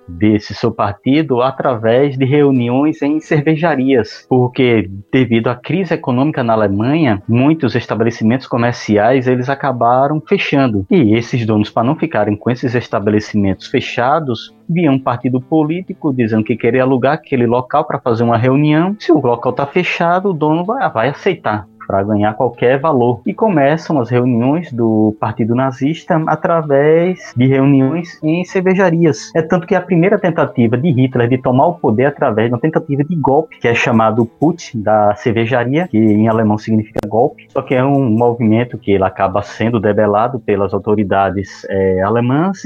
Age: 20-39